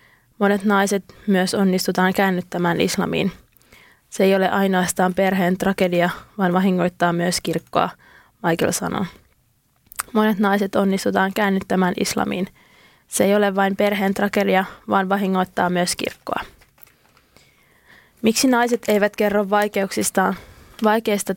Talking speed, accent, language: 110 wpm, native, Finnish